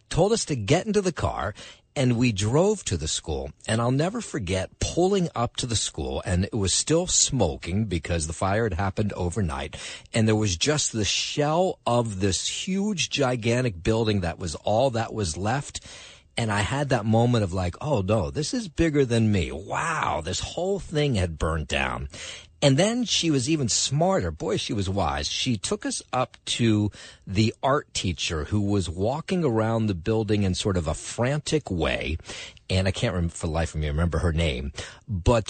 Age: 50-69